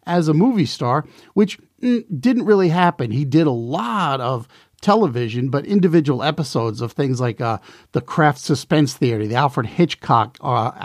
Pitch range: 130-170 Hz